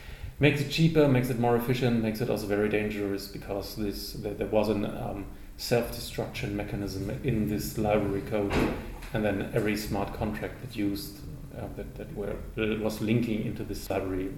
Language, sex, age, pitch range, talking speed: English, male, 30-49, 105-120 Hz, 165 wpm